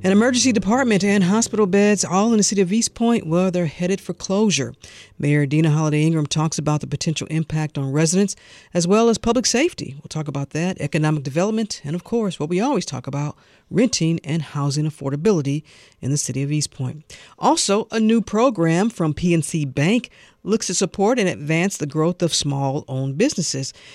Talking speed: 190 wpm